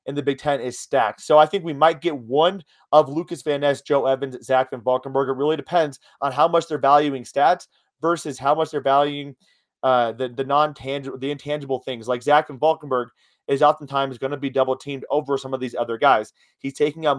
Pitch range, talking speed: 130-155 Hz, 225 wpm